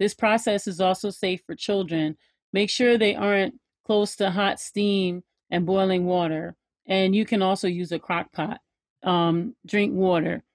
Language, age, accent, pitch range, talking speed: English, 40-59, American, 185-215 Hz, 165 wpm